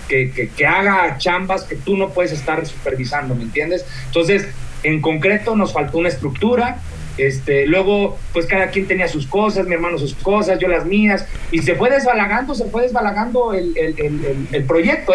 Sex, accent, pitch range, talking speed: male, Mexican, 140-190 Hz, 185 wpm